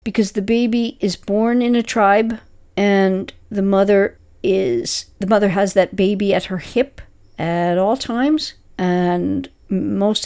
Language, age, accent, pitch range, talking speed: English, 50-69, American, 180-220 Hz, 145 wpm